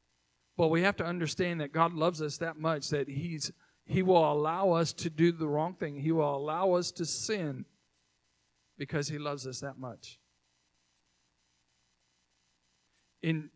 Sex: male